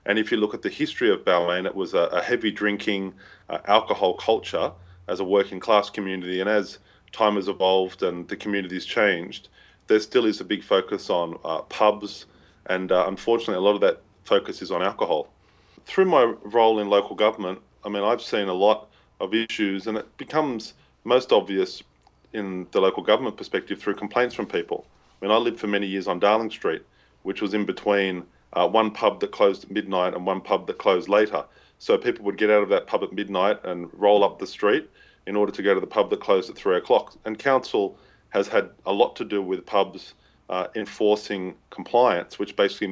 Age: 30-49